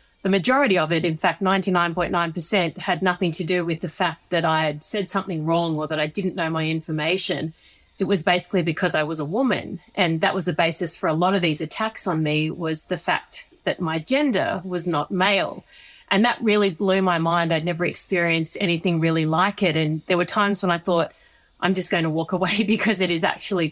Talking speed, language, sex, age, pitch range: 220 wpm, English, female, 30-49, 165-195 Hz